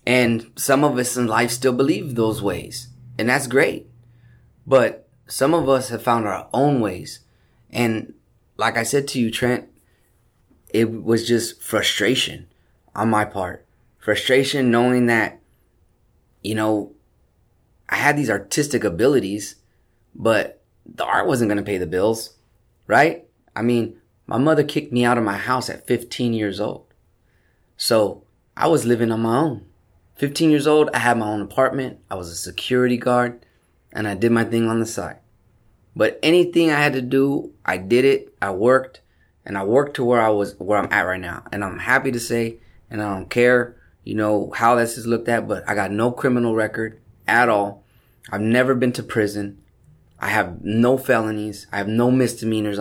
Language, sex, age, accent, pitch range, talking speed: English, male, 20-39, American, 105-125 Hz, 180 wpm